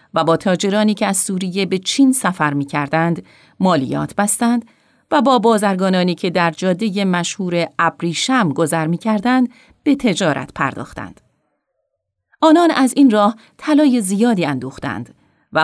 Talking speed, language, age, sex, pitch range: 135 wpm, Persian, 30-49, female, 165-225 Hz